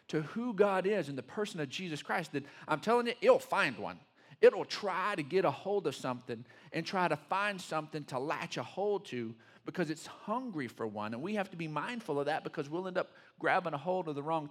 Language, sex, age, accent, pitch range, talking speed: English, male, 40-59, American, 115-155 Hz, 240 wpm